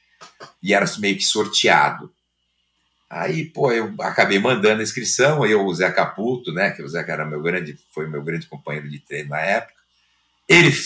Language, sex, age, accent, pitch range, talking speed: Portuguese, male, 50-69, Brazilian, 95-150 Hz, 180 wpm